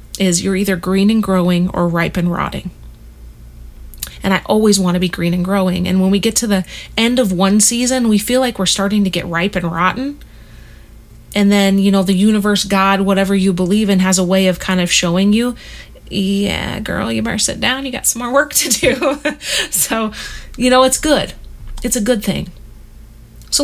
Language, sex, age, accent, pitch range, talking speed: English, female, 30-49, American, 185-250 Hz, 205 wpm